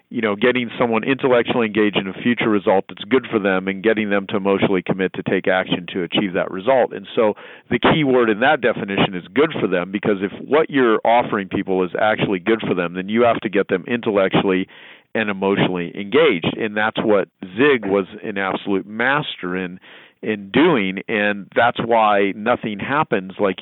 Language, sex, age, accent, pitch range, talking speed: English, male, 40-59, American, 95-120 Hz, 195 wpm